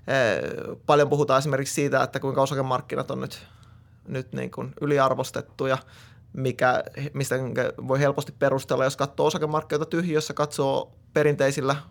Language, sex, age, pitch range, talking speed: Finnish, male, 20-39, 130-150 Hz, 120 wpm